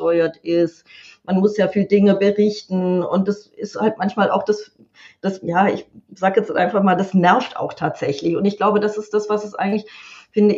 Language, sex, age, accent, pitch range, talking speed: German, female, 30-49, German, 170-200 Hz, 200 wpm